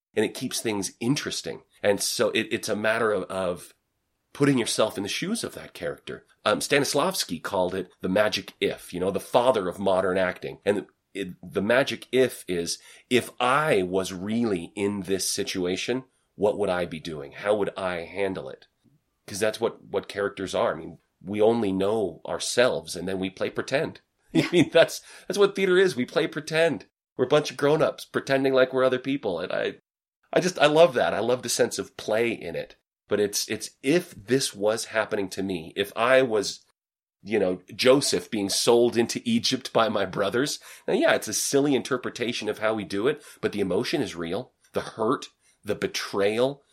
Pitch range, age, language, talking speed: 100-135 Hz, 30-49, English, 195 wpm